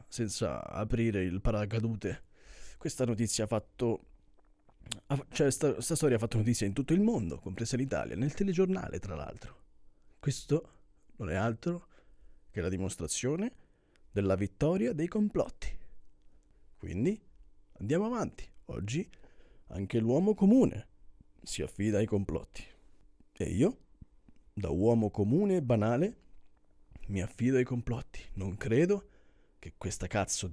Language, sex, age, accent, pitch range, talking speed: Italian, male, 40-59, native, 95-145 Hz, 120 wpm